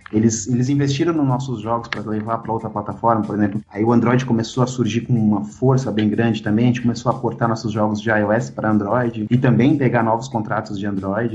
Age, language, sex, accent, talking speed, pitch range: 30-49, Portuguese, male, Brazilian, 225 wpm, 110-135 Hz